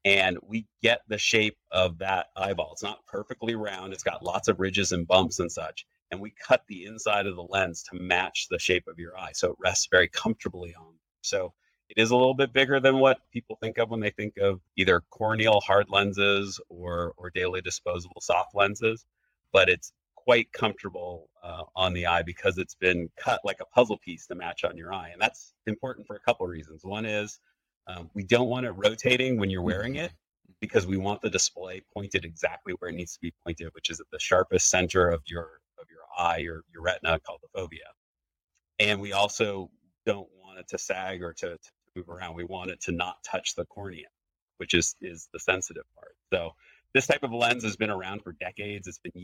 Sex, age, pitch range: male, 30-49, 90-110 Hz